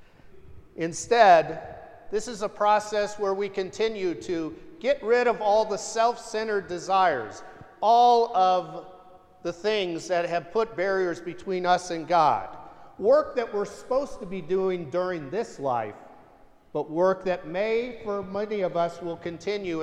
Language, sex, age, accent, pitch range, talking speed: English, male, 50-69, American, 170-210 Hz, 145 wpm